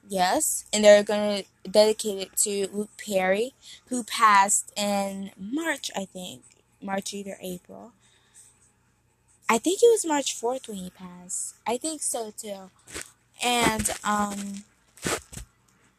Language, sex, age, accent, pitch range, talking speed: English, female, 20-39, American, 195-240 Hz, 125 wpm